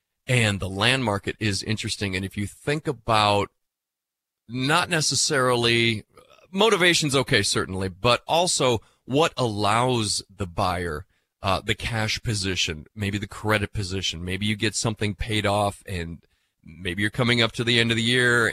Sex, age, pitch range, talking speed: male, 30-49, 100-135 Hz, 150 wpm